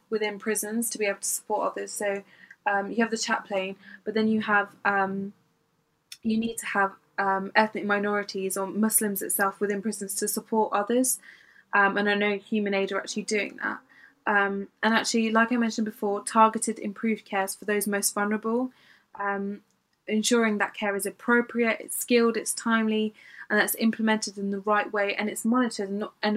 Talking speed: 185 wpm